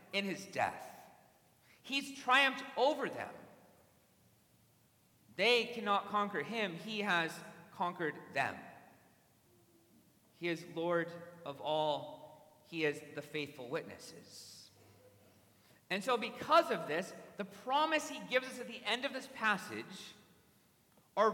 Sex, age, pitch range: male, 40-59, 165-255 Hz